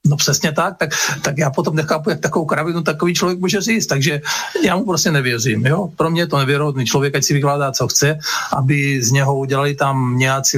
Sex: male